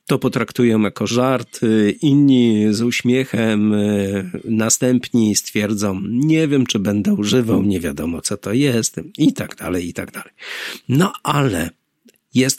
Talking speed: 135 wpm